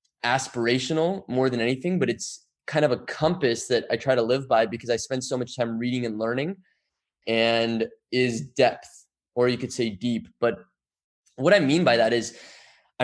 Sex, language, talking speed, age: male, English, 190 wpm, 20-39